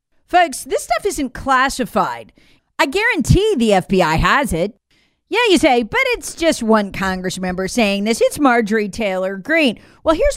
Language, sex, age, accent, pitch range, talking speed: English, female, 40-59, American, 215-310 Hz, 160 wpm